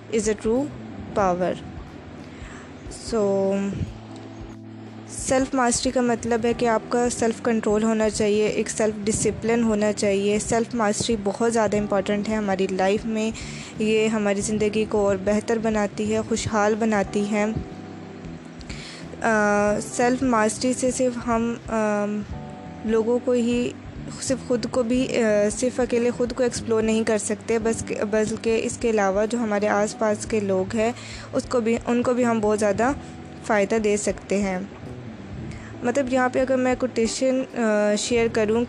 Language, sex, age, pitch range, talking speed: Urdu, female, 20-39, 205-240 Hz, 150 wpm